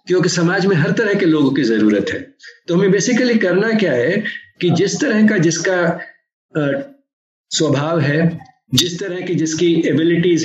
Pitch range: 165-245 Hz